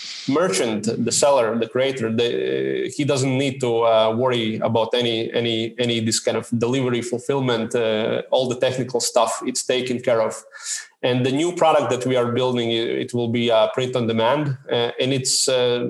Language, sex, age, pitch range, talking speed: English, male, 20-39, 120-135 Hz, 190 wpm